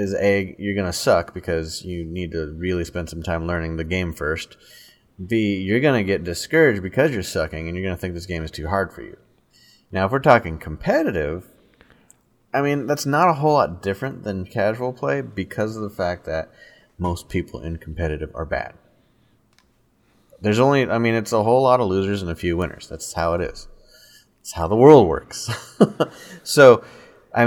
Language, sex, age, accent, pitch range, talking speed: English, male, 30-49, American, 85-115 Hz, 200 wpm